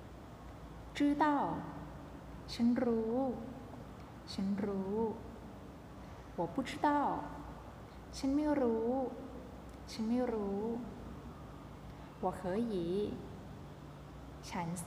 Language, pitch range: Thai, 185-245 Hz